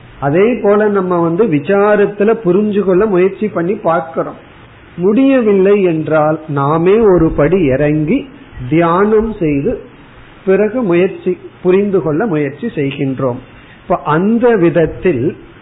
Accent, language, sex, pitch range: native, Tamil, male, 140-185 Hz